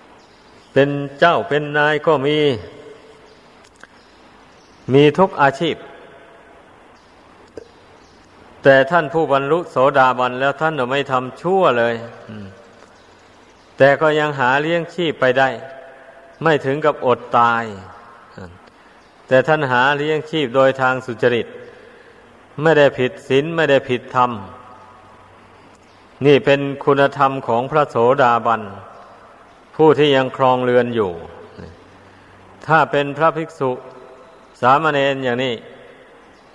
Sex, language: male, Thai